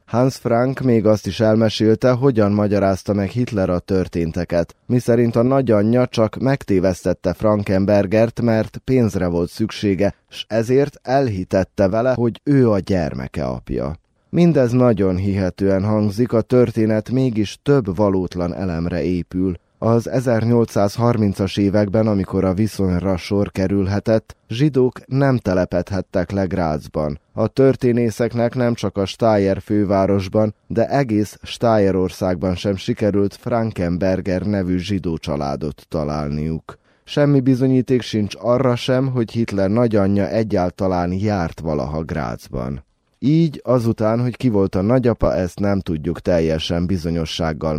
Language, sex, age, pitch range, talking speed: Hungarian, male, 20-39, 90-115 Hz, 120 wpm